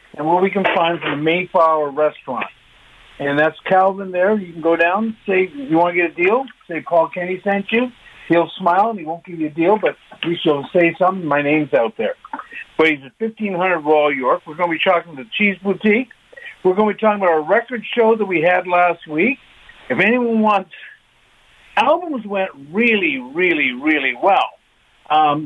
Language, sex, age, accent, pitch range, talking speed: English, male, 50-69, American, 165-215 Hz, 205 wpm